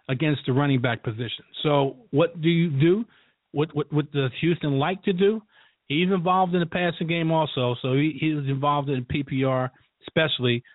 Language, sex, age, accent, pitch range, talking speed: English, male, 40-59, American, 135-165 Hz, 180 wpm